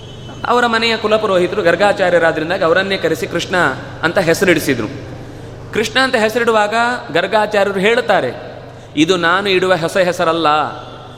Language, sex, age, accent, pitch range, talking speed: Kannada, male, 30-49, native, 150-210 Hz, 100 wpm